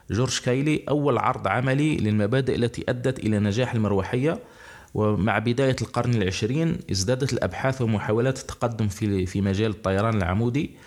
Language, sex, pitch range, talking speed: Arabic, male, 100-125 Hz, 125 wpm